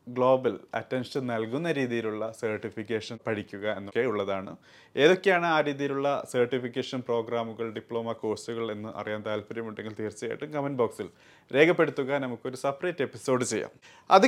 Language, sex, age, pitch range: Malayalam, male, 30-49, 125-155 Hz